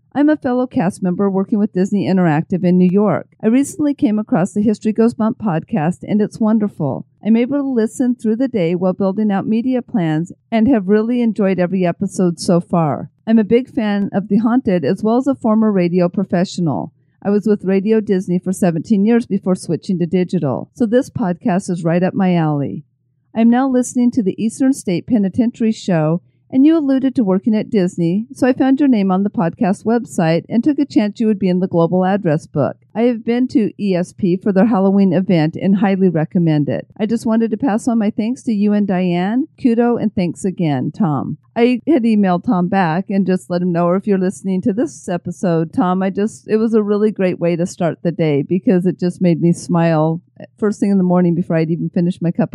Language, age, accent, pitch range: English, 50-69, American, 175-225 Hz